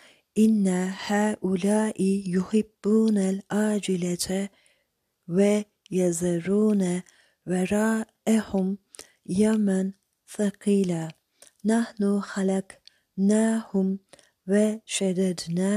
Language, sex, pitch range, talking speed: Turkish, female, 185-205 Hz, 40 wpm